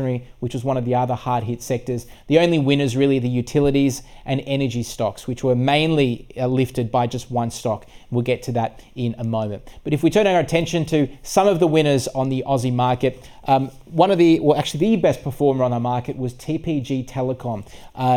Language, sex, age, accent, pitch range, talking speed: English, male, 20-39, Australian, 125-150 Hz, 210 wpm